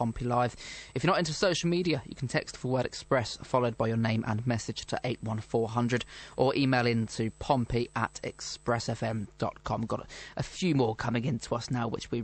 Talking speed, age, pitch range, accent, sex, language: 190 wpm, 20-39, 120-150 Hz, British, male, English